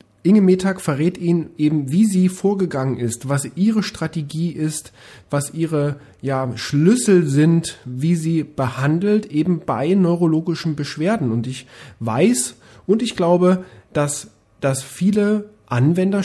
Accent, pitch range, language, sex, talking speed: German, 130-185 Hz, German, male, 125 wpm